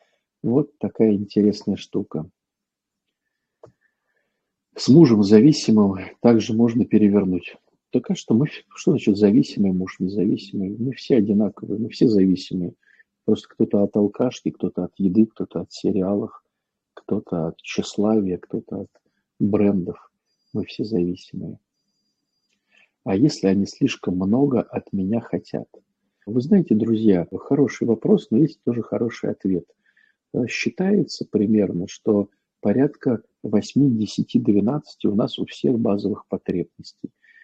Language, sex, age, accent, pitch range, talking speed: Russian, male, 50-69, native, 95-110 Hz, 115 wpm